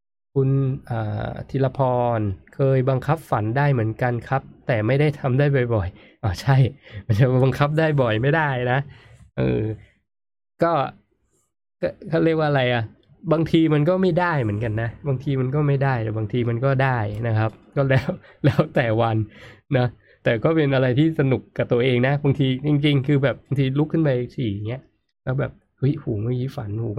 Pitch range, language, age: 110-135 Hz, Thai, 20-39